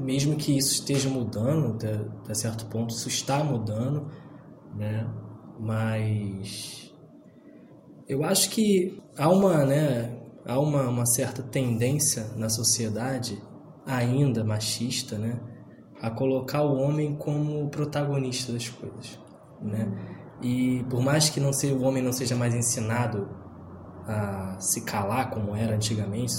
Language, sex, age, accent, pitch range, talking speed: Portuguese, male, 20-39, Brazilian, 115-150 Hz, 130 wpm